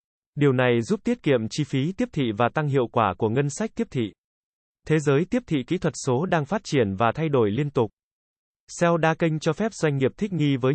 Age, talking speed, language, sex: 20-39, 240 wpm, Vietnamese, male